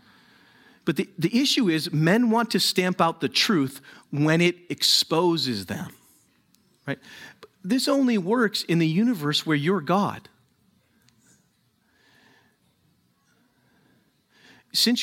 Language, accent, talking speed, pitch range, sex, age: English, American, 110 wpm, 130-195 Hz, male, 40-59